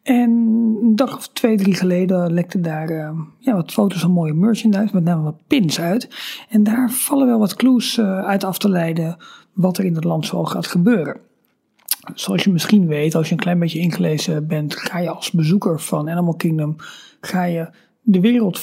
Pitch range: 165-210 Hz